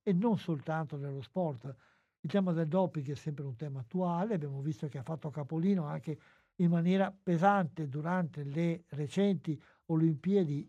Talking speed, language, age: 155 wpm, Italian, 60-79